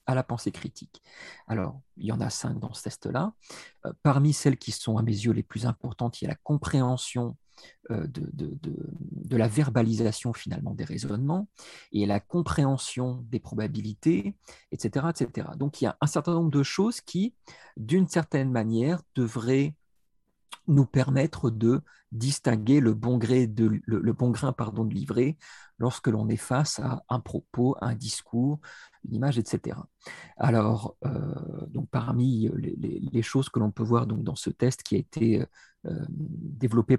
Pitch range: 115-150 Hz